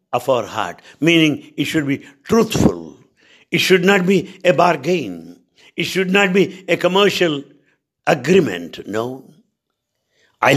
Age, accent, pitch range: 60-79, Indian, 140-195 Hz